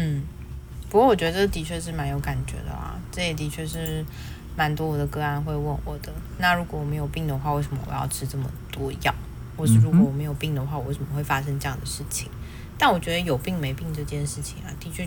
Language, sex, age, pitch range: Chinese, female, 20-39, 135-160 Hz